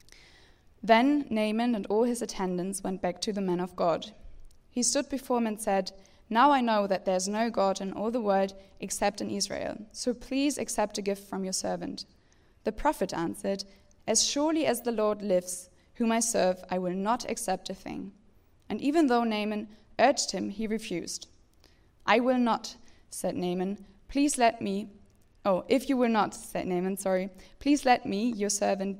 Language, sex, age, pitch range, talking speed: English, female, 10-29, 185-225 Hz, 185 wpm